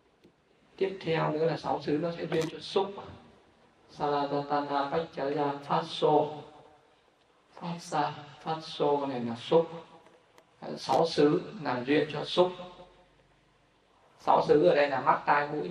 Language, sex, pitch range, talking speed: Vietnamese, male, 145-180 Hz, 150 wpm